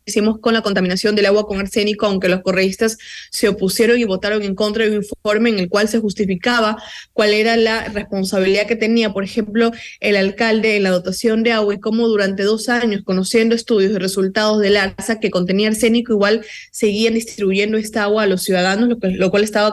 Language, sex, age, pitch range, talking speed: Spanish, female, 20-39, 200-235 Hz, 205 wpm